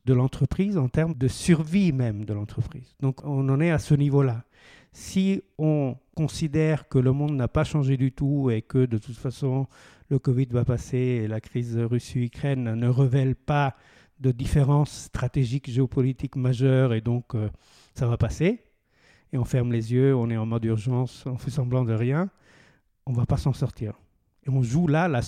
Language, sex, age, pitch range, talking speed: French, male, 50-69, 120-140 Hz, 190 wpm